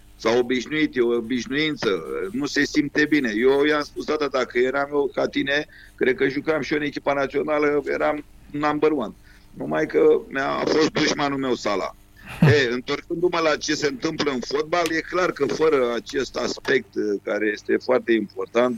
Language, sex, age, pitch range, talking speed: Romanian, male, 50-69, 120-170 Hz, 175 wpm